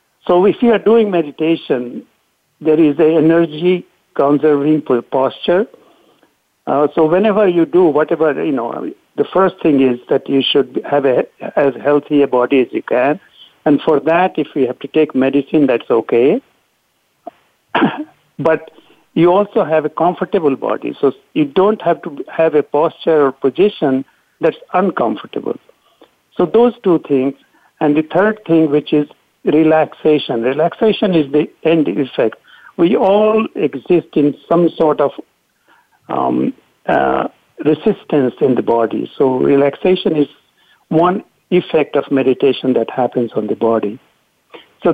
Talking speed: 145 wpm